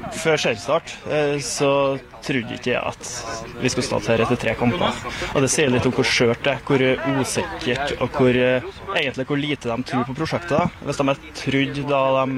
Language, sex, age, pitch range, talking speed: English, male, 20-39, 125-145 Hz, 180 wpm